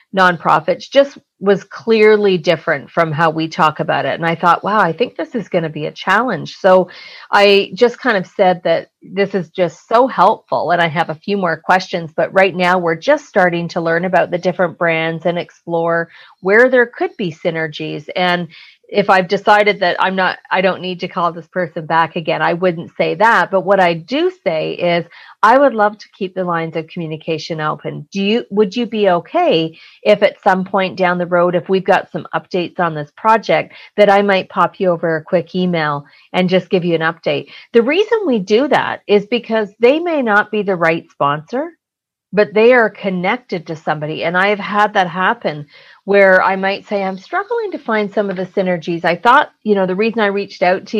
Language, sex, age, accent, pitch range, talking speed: English, female, 40-59, American, 170-210 Hz, 215 wpm